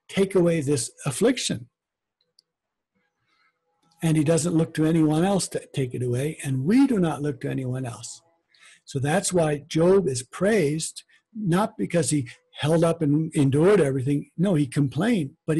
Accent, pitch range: American, 140-175 Hz